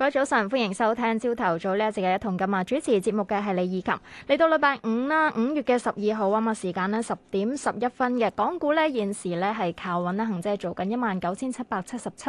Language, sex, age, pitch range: Chinese, female, 20-39, 185-245 Hz